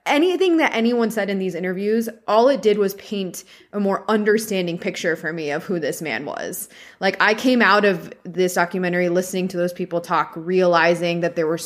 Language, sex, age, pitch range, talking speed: English, female, 20-39, 185-235 Hz, 200 wpm